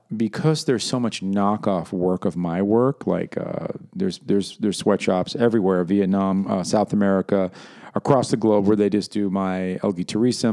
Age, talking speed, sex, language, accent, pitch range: 40-59, 170 wpm, male, English, American, 95-135 Hz